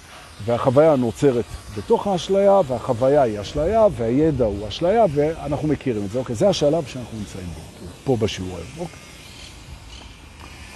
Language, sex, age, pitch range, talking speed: Hebrew, male, 50-69, 110-180 Hz, 115 wpm